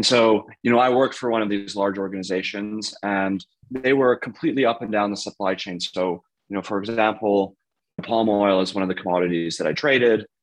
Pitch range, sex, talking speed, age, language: 95-115 Hz, male, 215 wpm, 30-49, English